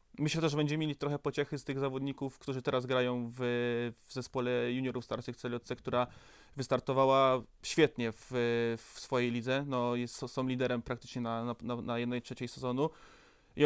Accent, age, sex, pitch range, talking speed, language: native, 20-39, male, 125-145 Hz, 170 wpm, Polish